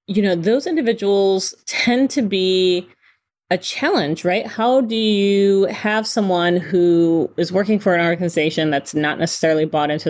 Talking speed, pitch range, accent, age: 155 wpm, 155-195 Hz, American, 30-49